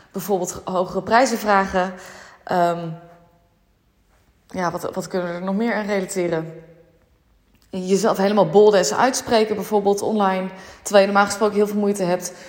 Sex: female